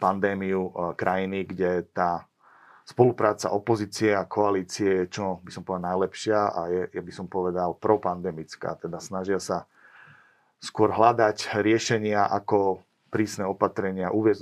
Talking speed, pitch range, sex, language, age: 130 wpm, 95-110 Hz, male, Slovak, 30-49